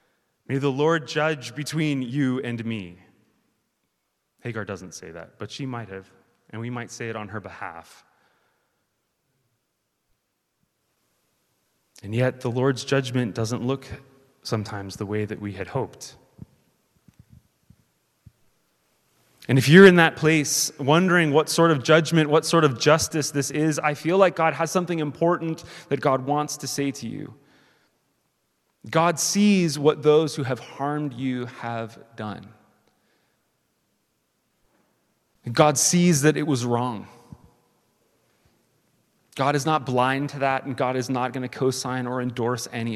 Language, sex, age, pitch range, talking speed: English, male, 30-49, 115-155 Hz, 140 wpm